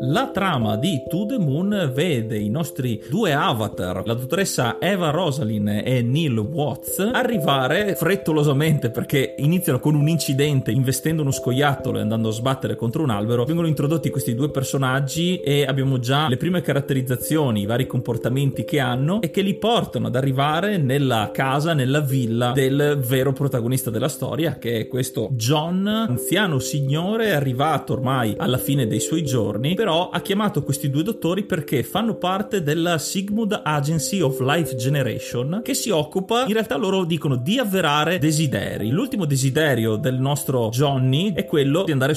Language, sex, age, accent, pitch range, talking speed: Italian, male, 30-49, native, 130-170 Hz, 160 wpm